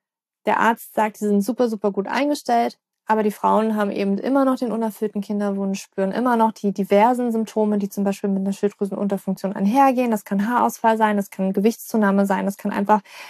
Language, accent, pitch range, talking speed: German, German, 200-230 Hz, 195 wpm